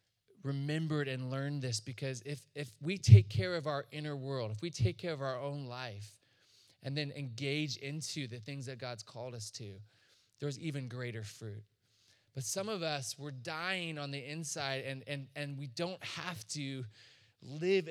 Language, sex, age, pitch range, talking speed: English, male, 20-39, 115-150 Hz, 180 wpm